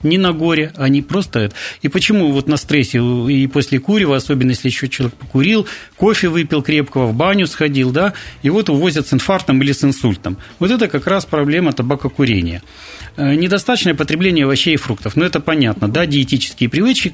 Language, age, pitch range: Russian, 40-59, 130-165 Hz